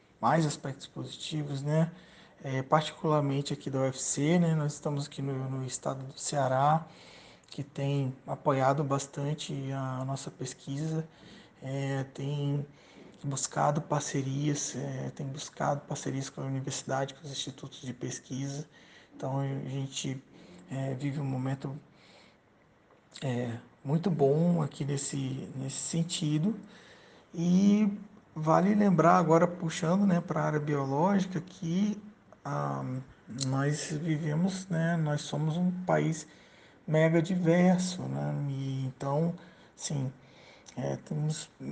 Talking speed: 120 wpm